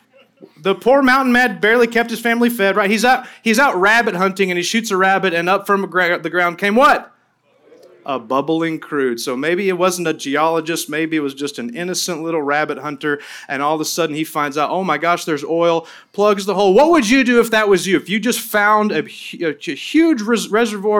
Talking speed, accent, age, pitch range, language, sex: 225 wpm, American, 30-49, 160-210 Hz, English, male